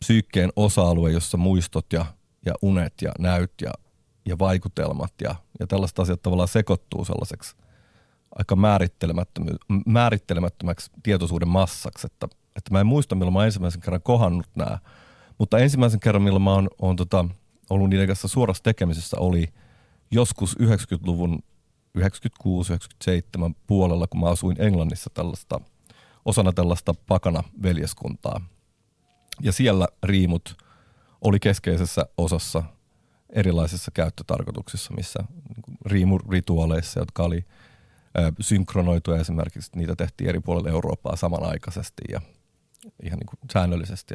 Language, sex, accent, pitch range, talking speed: Finnish, male, native, 85-105 Hz, 115 wpm